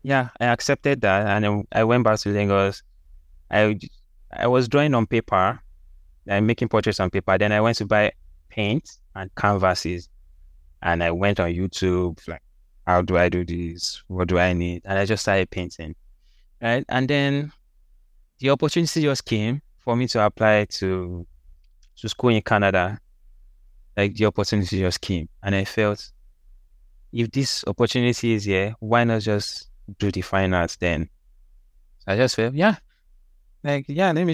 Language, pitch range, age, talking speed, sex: English, 85-120 Hz, 10-29, 165 wpm, male